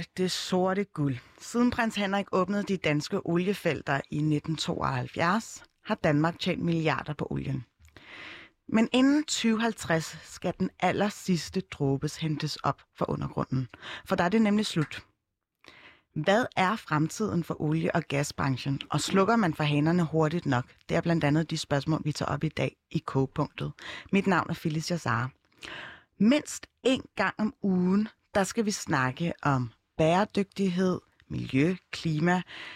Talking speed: 150 wpm